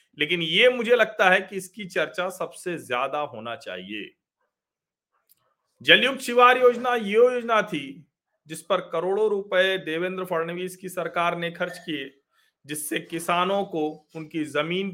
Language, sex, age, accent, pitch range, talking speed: Hindi, male, 40-59, native, 170-220 Hz, 135 wpm